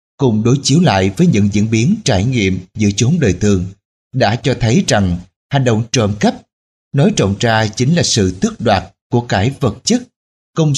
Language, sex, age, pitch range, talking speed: Vietnamese, male, 20-39, 100-135 Hz, 195 wpm